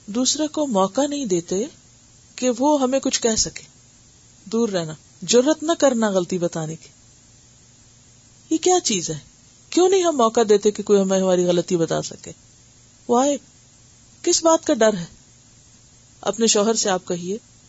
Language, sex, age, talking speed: Urdu, female, 40-59, 155 wpm